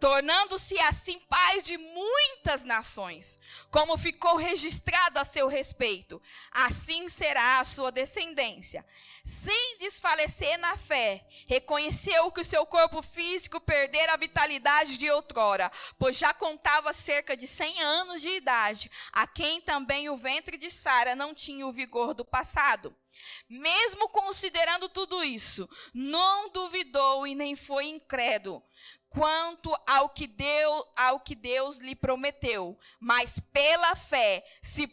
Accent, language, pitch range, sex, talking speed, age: Brazilian, Spanish, 265-345 Hz, female, 125 wpm, 20-39